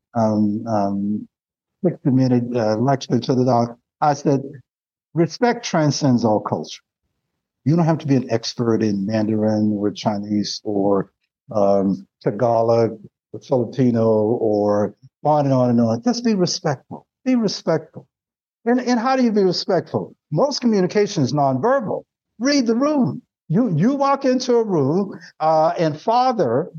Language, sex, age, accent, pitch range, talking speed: English, male, 60-79, American, 120-195 Hz, 145 wpm